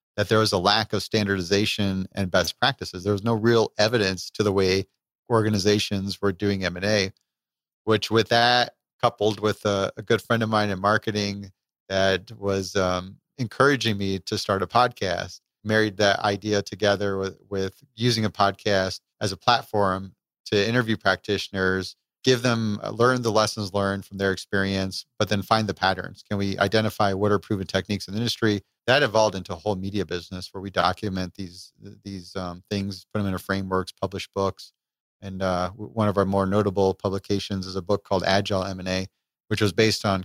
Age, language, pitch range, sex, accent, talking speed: 40-59, English, 95-105 Hz, male, American, 185 wpm